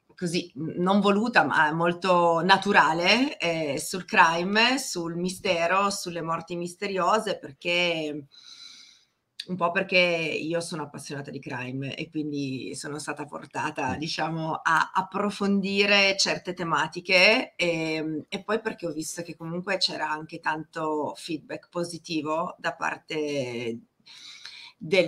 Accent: native